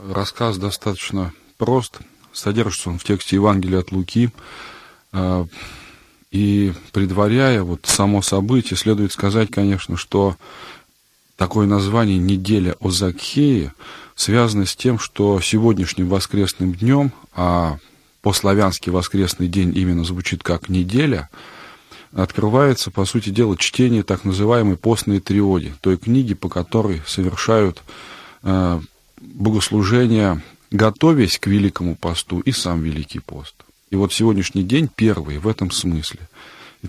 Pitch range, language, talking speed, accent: 90-110 Hz, Russian, 115 wpm, native